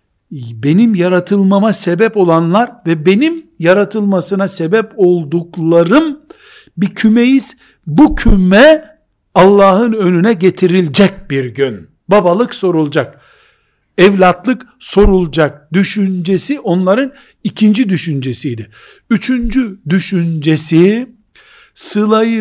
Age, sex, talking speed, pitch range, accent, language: 60-79, male, 80 wpm, 170-220 Hz, native, Turkish